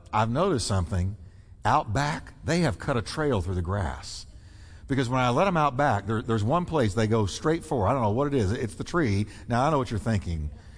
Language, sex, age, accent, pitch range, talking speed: English, male, 60-79, American, 105-175 Hz, 235 wpm